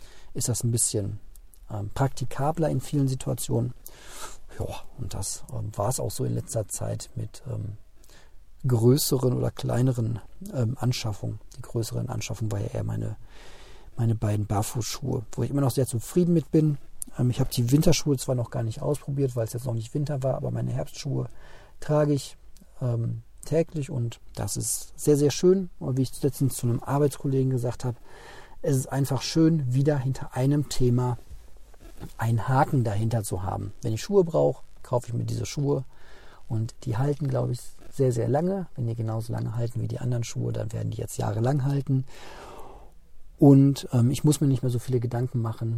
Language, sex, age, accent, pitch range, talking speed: German, male, 40-59, German, 115-135 Hz, 180 wpm